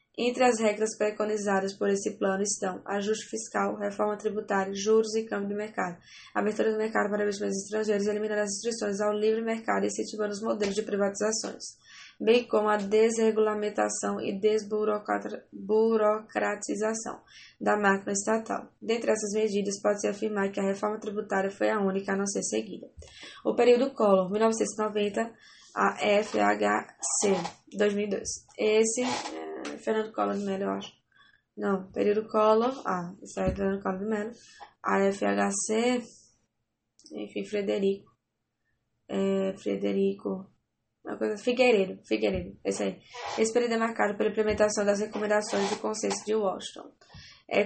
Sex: female